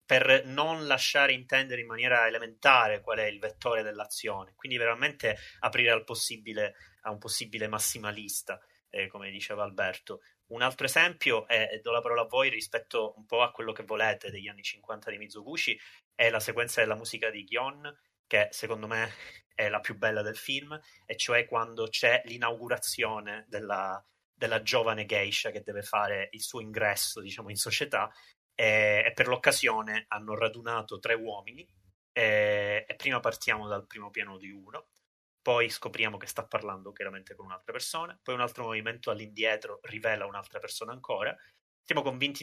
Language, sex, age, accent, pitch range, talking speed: Italian, male, 30-49, native, 105-135 Hz, 165 wpm